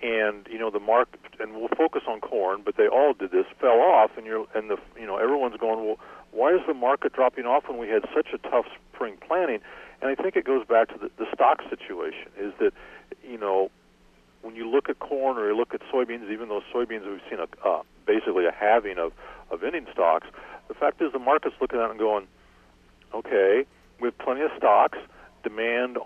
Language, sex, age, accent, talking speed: English, male, 50-69, American, 220 wpm